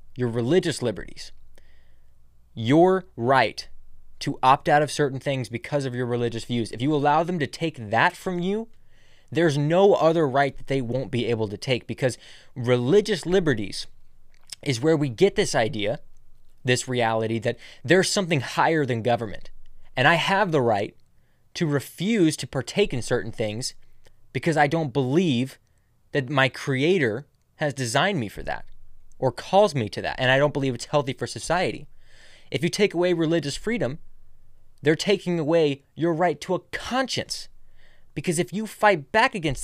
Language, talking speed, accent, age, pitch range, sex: English, 165 wpm, American, 20-39, 120-180 Hz, male